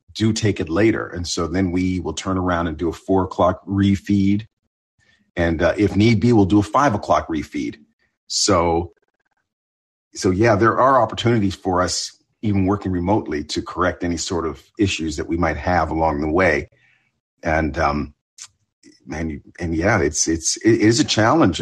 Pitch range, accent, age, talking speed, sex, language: 85-100 Hz, American, 40-59, 175 wpm, male, English